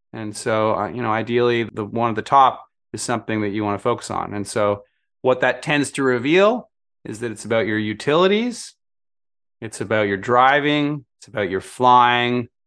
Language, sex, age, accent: English, male, 30-49, American